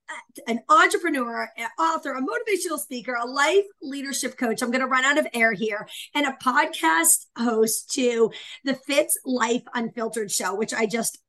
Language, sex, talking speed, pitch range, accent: English, female, 165 wpm, 230-290 Hz, American